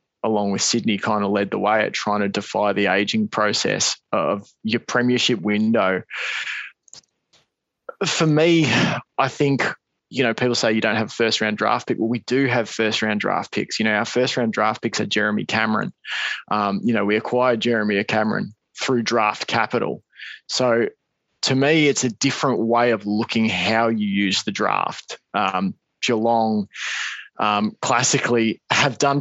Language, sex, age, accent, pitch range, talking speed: English, male, 20-39, Australian, 105-125 Hz, 170 wpm